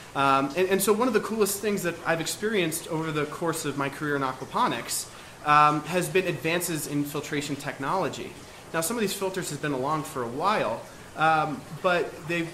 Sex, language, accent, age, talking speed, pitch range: male, English, American, 30-49, 195 wpm, 130-160 Hz